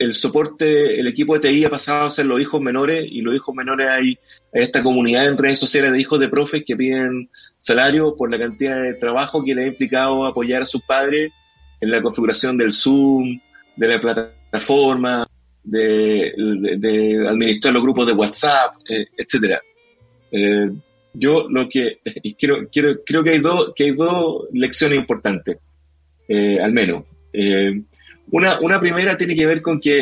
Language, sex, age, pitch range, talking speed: English, male, 30-49, 110-145 Hz, 165 wpm